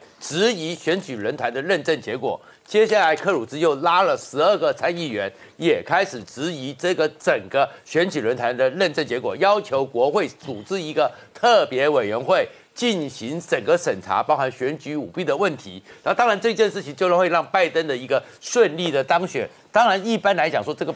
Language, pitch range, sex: Chinese, 150-205 Hz, male